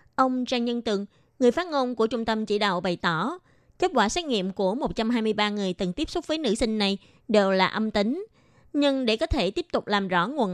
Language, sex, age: Vietnamese, female, 20-39